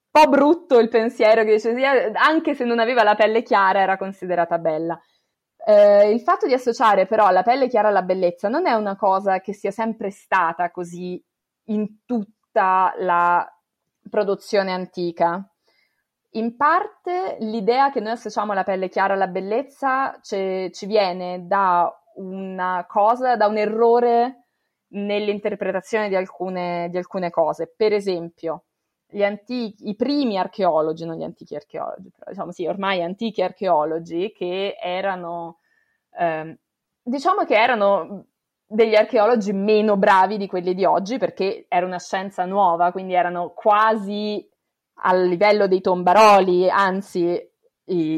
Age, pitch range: 20-39, 180-230 Hz